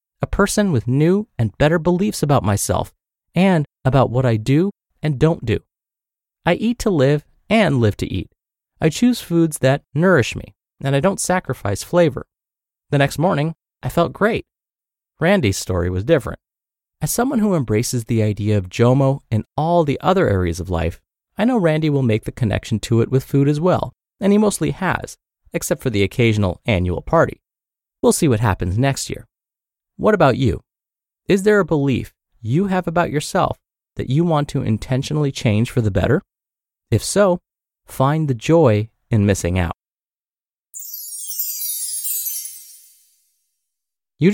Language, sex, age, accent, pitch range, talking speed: English, male, 30-49, American, 105-160 Hz, 160 wpm